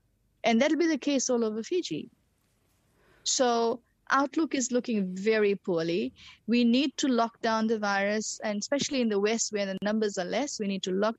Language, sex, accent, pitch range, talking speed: English, female, Indian, 185-235 Hz, 190 wpm